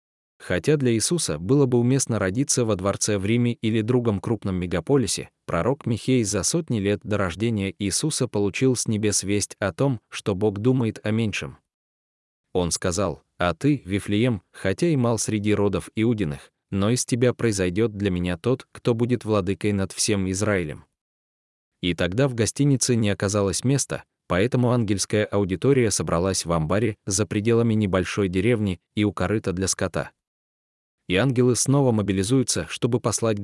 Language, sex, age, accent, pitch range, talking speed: Russian, male, 20-39, native, 95-120 Hz, 155 wpm